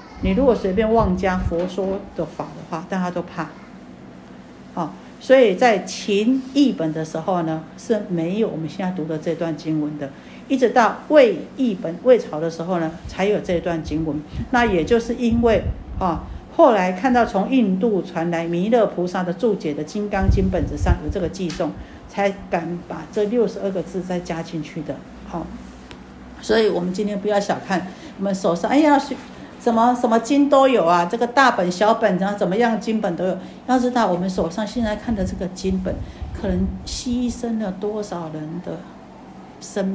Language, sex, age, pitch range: Chinese, female, 50-69, 165-220 Hz